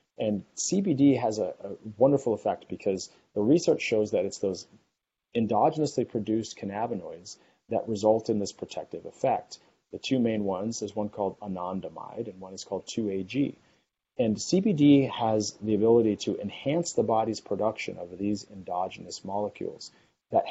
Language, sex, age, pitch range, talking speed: English, male, 30-49, 100-120 Hz, 150 wpm